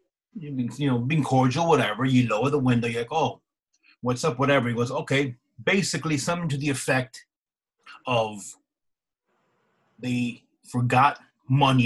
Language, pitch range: English, 120-155 Hz